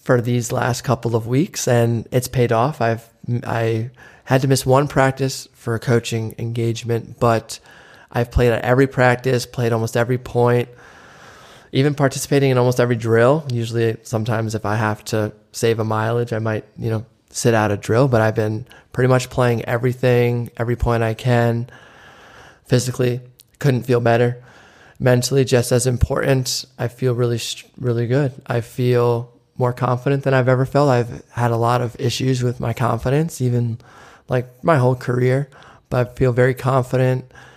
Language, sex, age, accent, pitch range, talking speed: English, male, 20-39, American, 115-130 Hz, 170 wpm